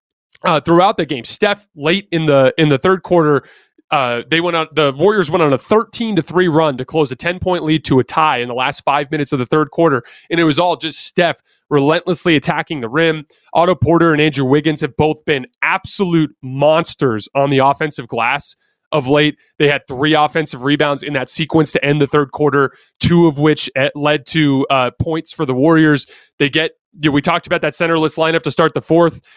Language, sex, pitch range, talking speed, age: English, male, 145-170 Hz, 215 wpm, 30-49